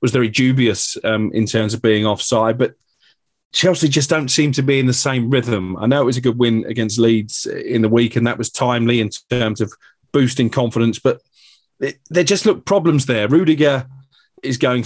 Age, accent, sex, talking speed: 30-49, British, male, 205 wpm